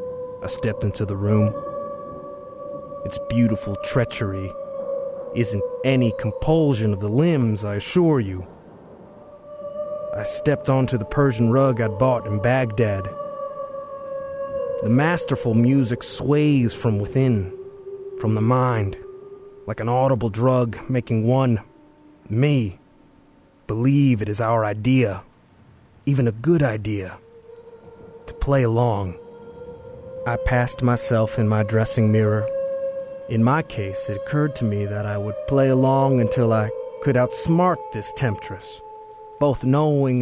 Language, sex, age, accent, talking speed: English, male, 30-49, American, 120 wpm